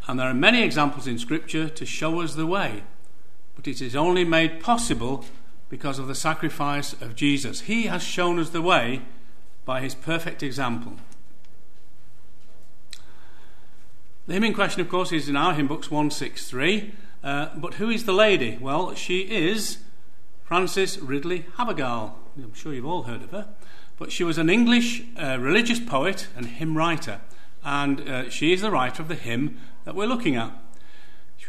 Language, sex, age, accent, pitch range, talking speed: English, male, 50-69, British, 140-195 Hz, 170 wpm